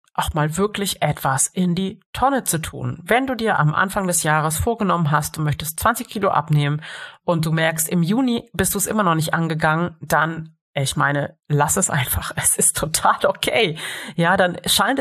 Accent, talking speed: German, 190 wpm